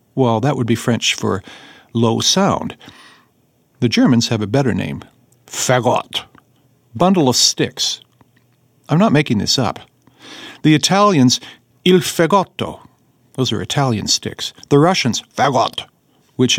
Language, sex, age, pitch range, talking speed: English, male, 50-69, 115-145 Hz, 125 wpm